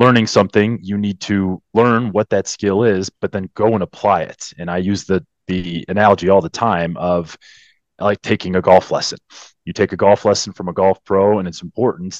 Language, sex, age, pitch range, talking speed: English, male, 30-49, 90-105 Hz, 215 wpm